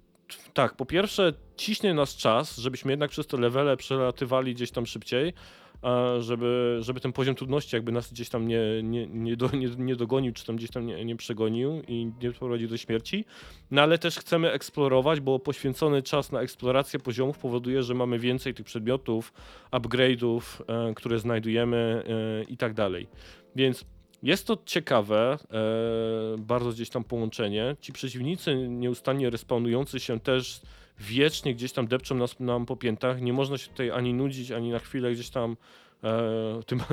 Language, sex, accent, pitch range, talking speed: Polish, male, native, 115-135 Hz, 155 wpm